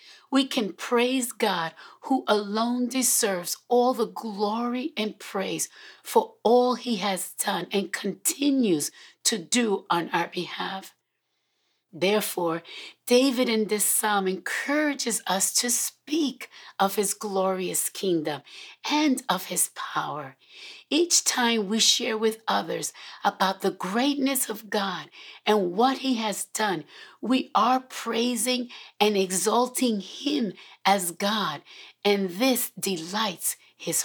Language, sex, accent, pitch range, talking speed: English, female, American, 195-255 Hz, 120 wpm